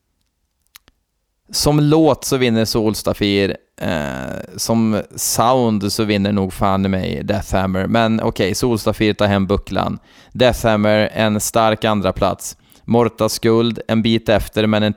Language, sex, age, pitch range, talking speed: Swedish, male, 20-39, 100-125 Hz, 130 wpm